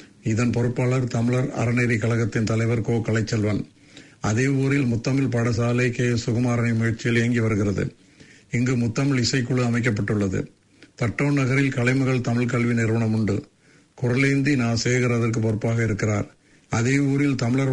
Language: English